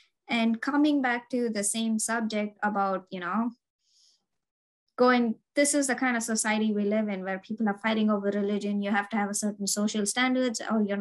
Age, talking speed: 20-39, 195 wpm